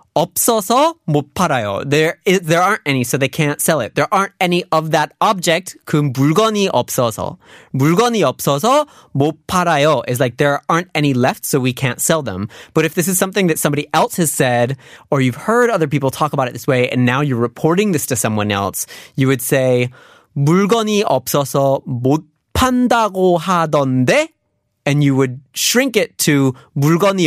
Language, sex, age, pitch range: Korean, male, 30-49, 130-175 Hz